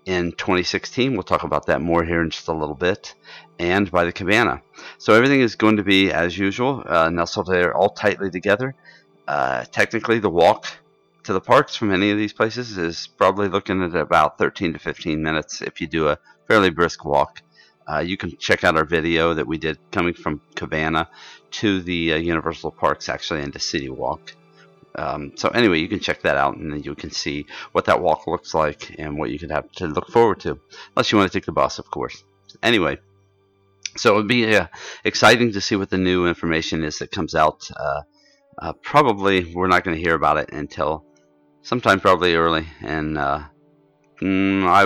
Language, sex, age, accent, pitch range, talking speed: English, male, 40-59, American, 80-100 Hz, 200 wpm